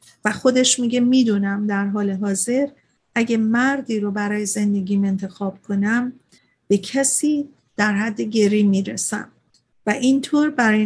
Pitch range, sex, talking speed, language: 210-245 Hz, female, 125 wpm, Persian